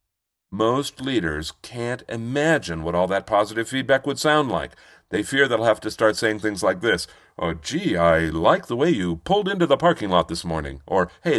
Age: 50-69